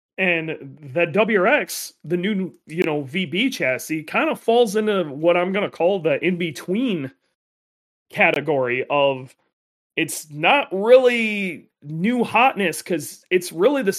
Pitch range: 150-210 Hz